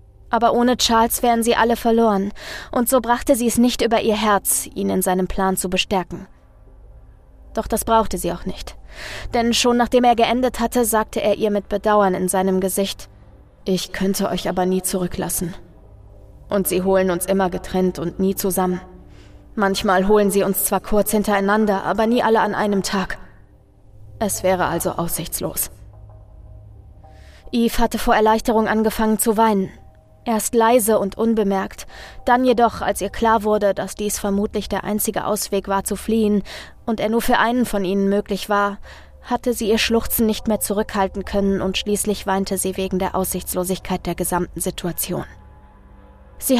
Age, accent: 20-39, German